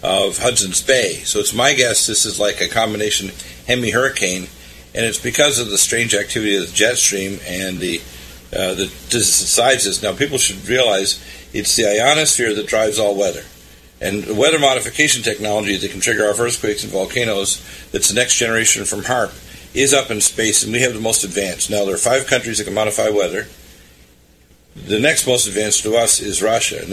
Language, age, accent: English, 50-69, American